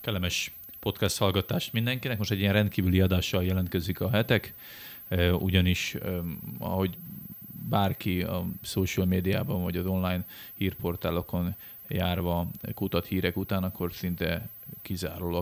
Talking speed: 115 wpm